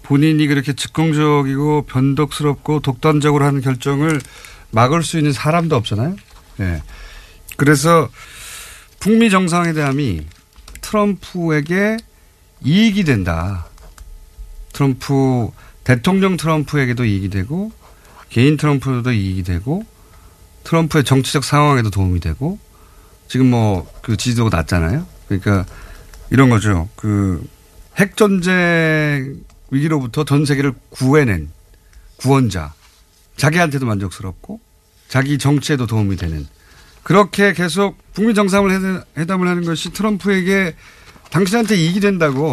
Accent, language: native, Korean